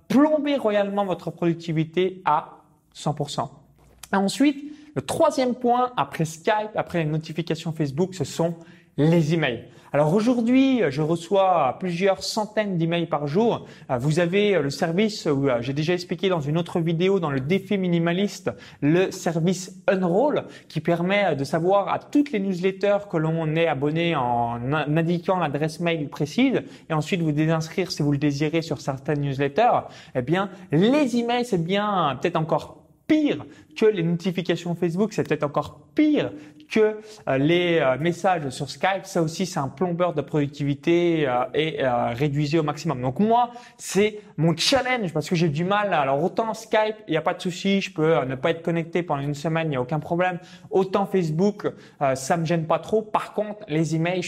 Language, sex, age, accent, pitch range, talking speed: French, male, 20-39, French, 155-195 Hz, 180 wpm